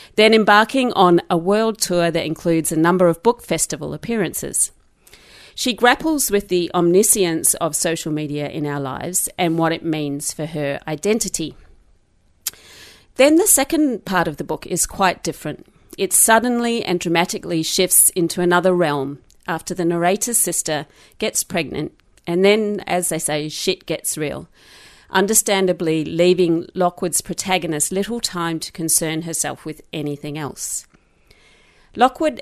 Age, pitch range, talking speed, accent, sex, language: 40-59, 160-195 Hz, 145 wpm, Australian, female, English